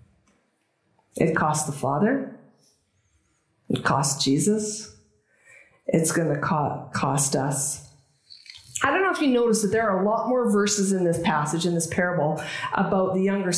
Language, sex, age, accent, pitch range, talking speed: English, female, 50-69, American, 155-230 Hz, 155 wpm